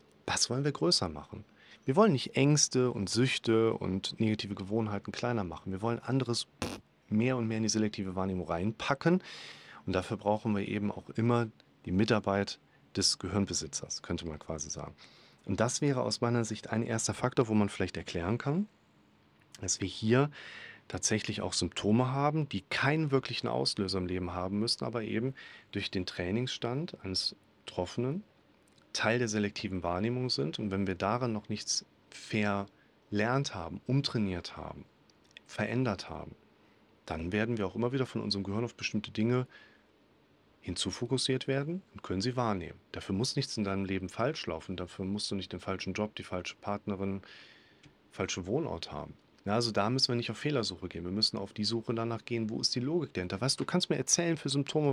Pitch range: 95-125 Hz